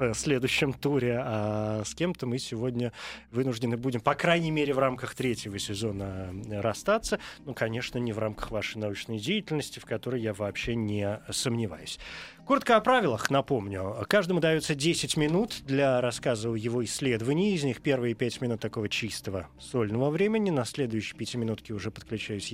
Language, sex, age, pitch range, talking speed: Russian, male, 20-39, 110-155 Hz, 160 wpm